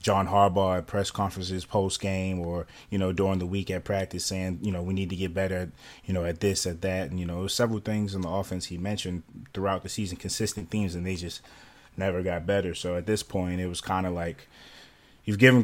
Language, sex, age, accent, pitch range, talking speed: English, male, 20-39, American, 90-100 Hz, 230 wpm